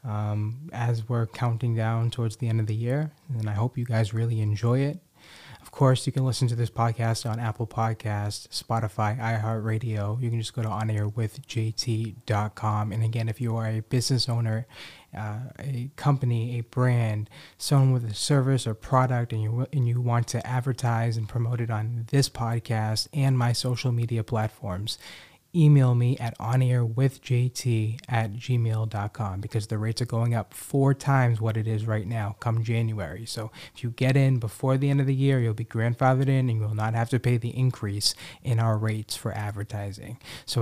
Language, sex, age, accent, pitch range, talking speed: English, male, 20-39, American, 110-125 Hz, 185 wpm